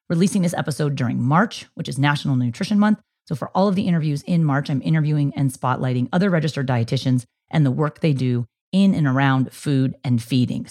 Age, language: 30-49, English